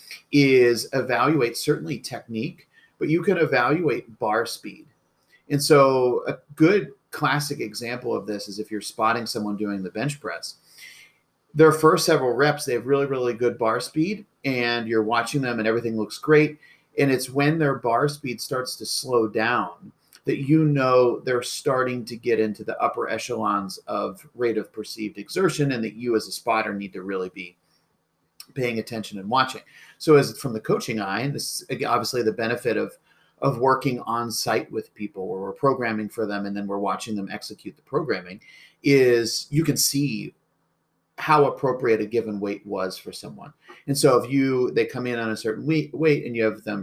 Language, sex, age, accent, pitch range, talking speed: English, male, 40-59, American, 110-140 Hz, 185 wpm